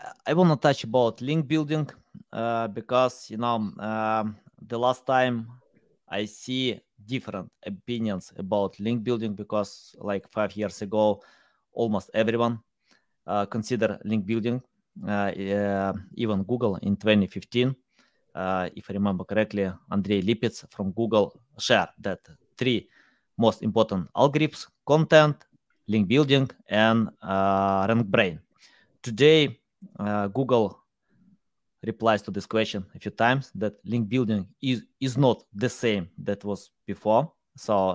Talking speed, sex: 130 wpm, male